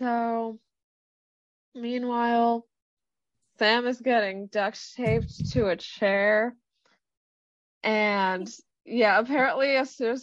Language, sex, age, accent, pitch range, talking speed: English, female, 20-39, American, 215-275 Hz, 95 wpm